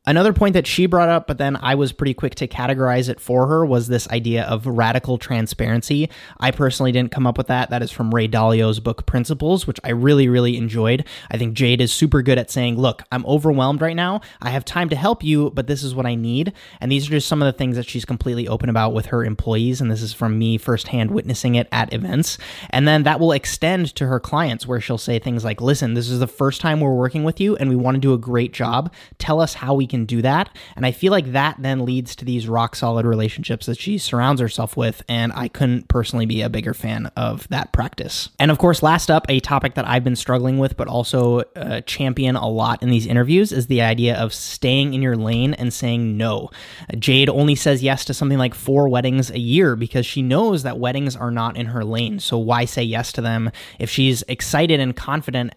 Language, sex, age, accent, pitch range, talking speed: English, male, 20-39, American, 115-140 Hz, 240 wpm